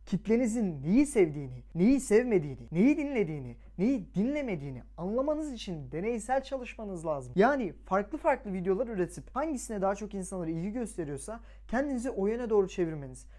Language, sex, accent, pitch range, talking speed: Turkish, male, native, 160-230 Hz, 135 wpm